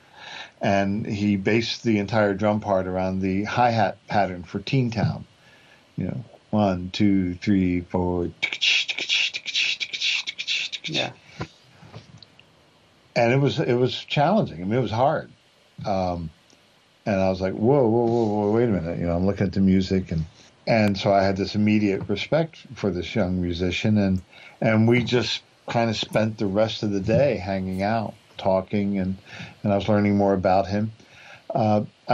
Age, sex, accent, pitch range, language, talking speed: 50-69, male, American, 95-115 Hz, English, 160 wpm